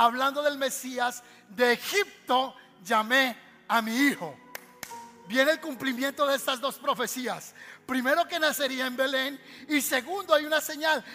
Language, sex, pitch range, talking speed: Spanish, male, 255-320 Hz, 140 wpm